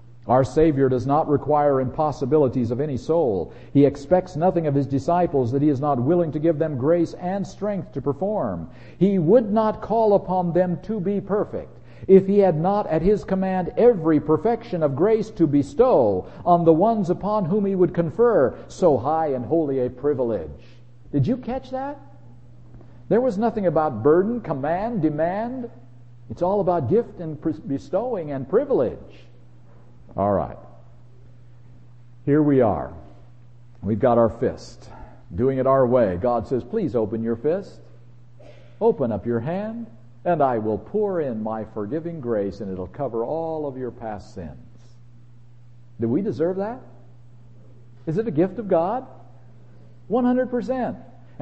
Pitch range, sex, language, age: 120-185 Hz, male, English, 50-69